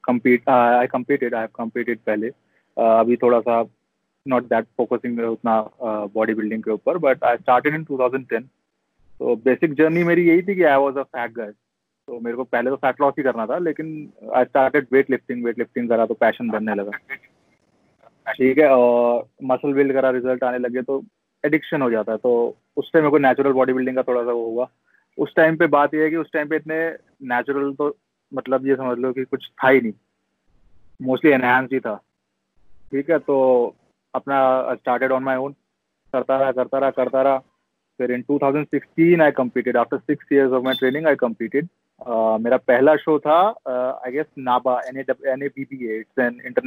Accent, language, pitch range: native, Hindi, 120-140 Hz